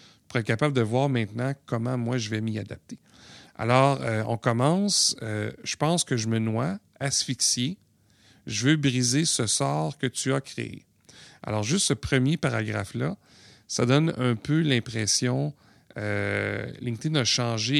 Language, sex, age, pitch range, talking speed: French, male, 40-59, 115-140 Hz, 155 wpm